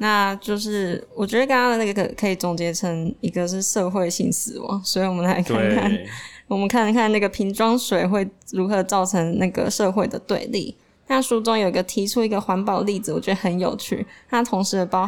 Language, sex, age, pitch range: Chinese, female, 20-39, 185-220 Hz